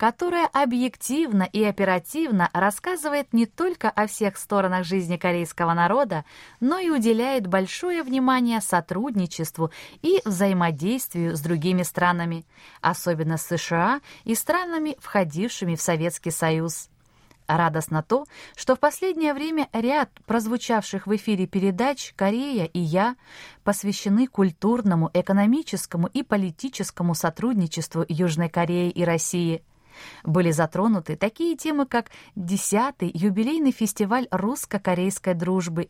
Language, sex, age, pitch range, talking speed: Russian, female, 20-39, 175-240 Hz, 110 wpm